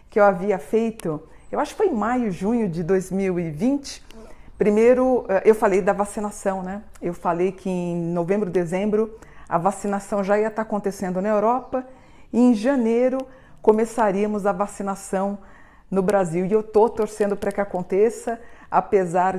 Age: 50-69